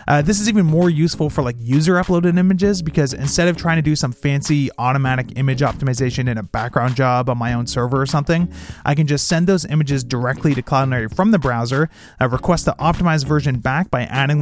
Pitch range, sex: 130-160 Hz, male